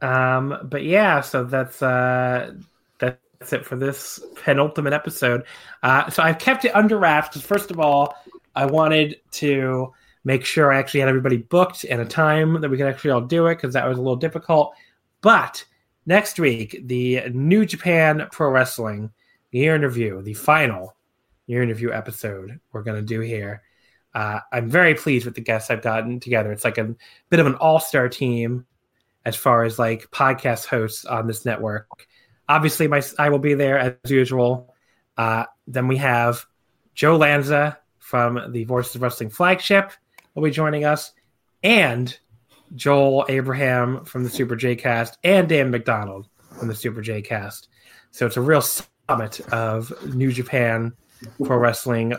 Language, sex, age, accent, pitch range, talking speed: English, male, 30-49, American, 115-150 Hz, 170 wpm